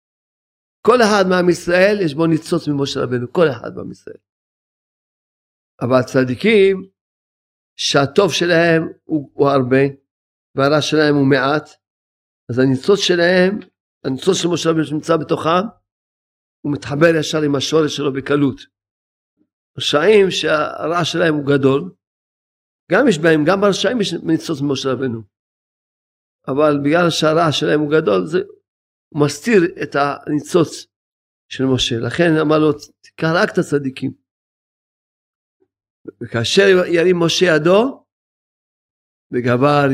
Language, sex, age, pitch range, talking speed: Hebrew, male, 50-69, 130-175 Hz, 120 wpm